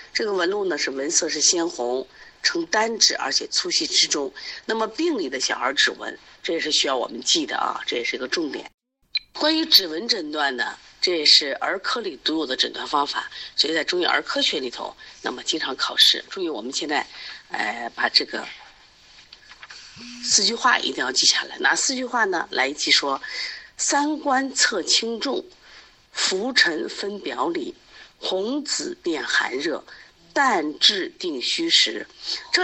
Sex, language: female, Chinese